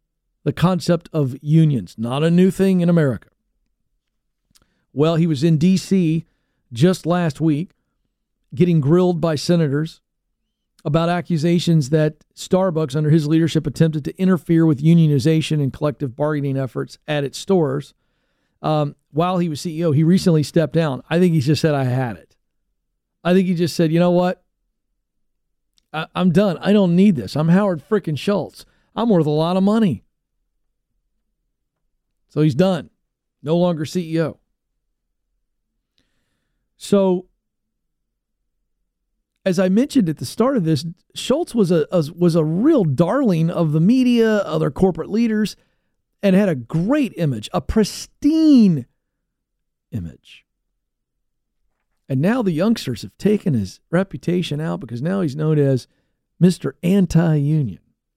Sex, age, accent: male, 50-69, American